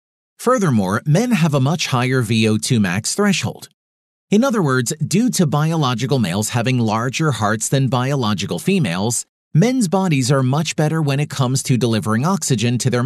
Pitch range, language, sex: 120-170 Hz, English, male